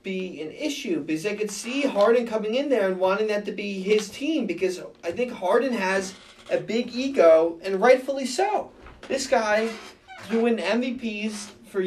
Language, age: English, 30-49